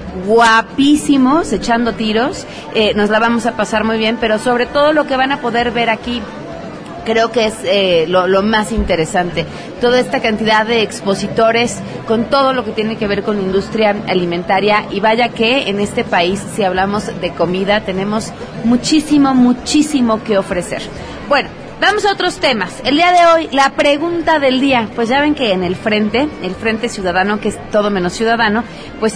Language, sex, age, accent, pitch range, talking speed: Spanish, female, 30-49, Mexican, 190-245 Hz, 185 wpm